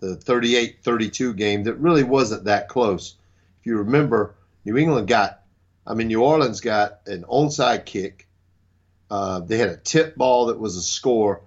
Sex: male